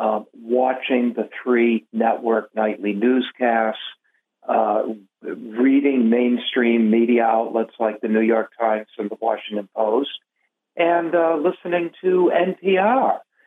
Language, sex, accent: English, male, American